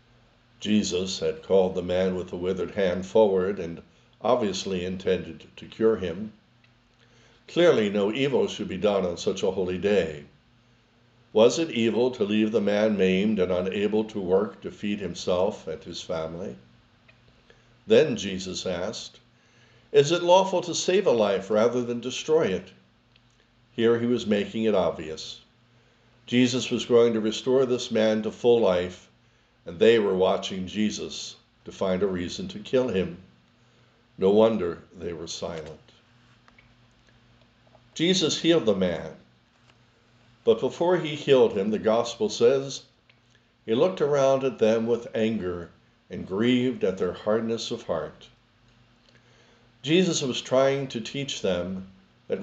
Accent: American